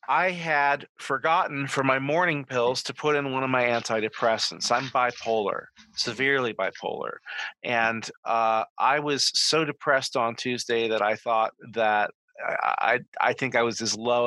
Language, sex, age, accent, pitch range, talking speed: English, male, 40-59, American, 115-145 Hz, 160 wpm